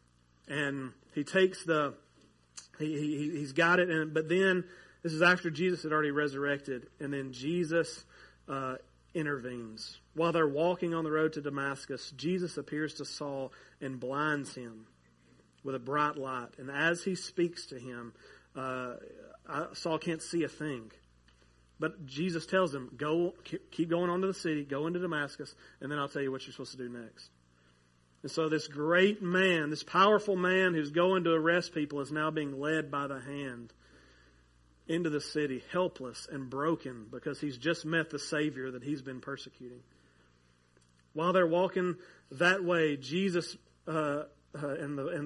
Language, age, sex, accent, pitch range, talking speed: English, 40-59, male, American, 130-165 Hz, 170 wpm